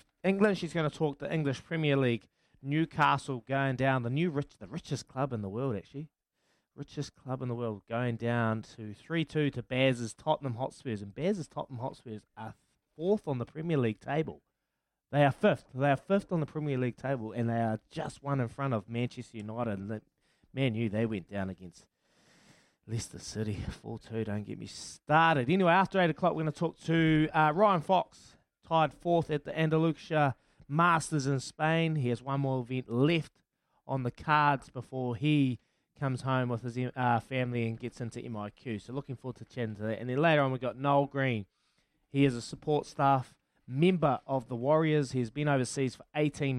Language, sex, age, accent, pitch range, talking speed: English, male, 20-39, Australian, 120-150 Hz, 190 wpm